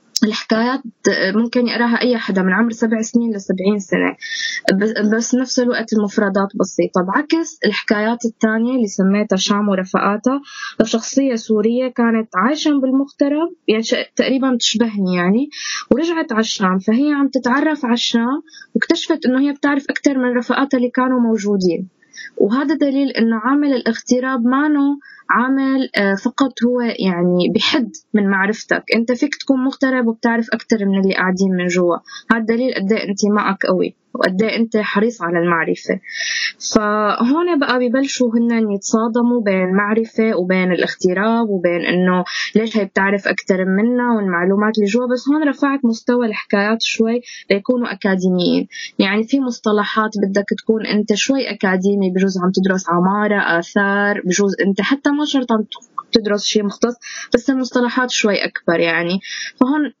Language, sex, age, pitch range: Arabic, female, 20-39, 200-260 Hz